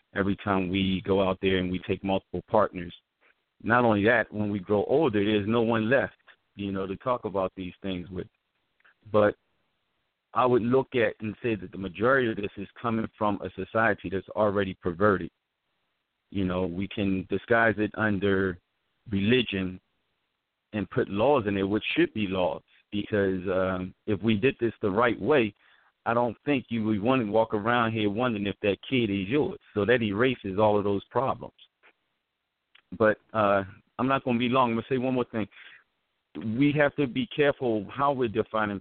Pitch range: 95-120 Hz